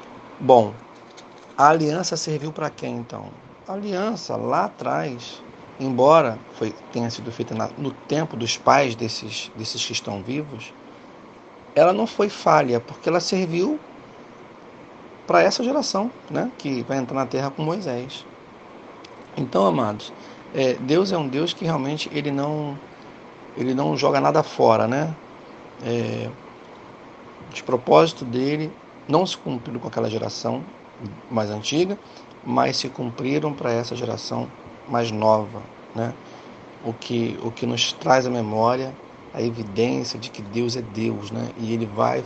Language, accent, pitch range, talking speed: Portuguese, Brazilian, 115-150 Hz, 140 wpm